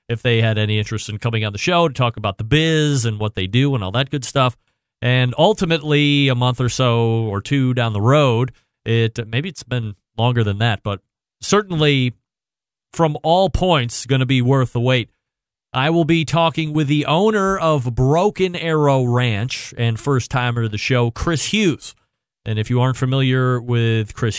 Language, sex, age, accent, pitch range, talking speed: English, male, 40-59, American, 120-150 Hz, 190 wpm